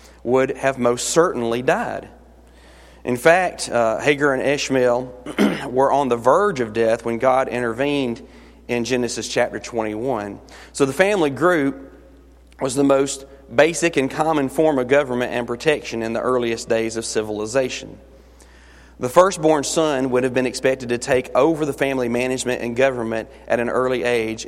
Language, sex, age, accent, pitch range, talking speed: English, male, 30-49, American, 115-140 Hz, 155 wpm